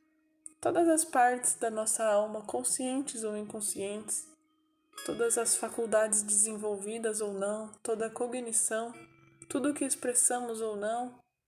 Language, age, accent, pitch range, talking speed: Portuguese, 10-29, Brazilian, 215-285 Hz, 125 wpm